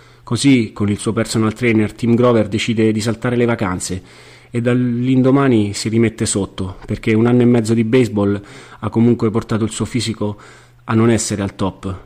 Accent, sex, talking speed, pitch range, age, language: native, male, 180 wpm, 100-120 Hz, 30-49, Italian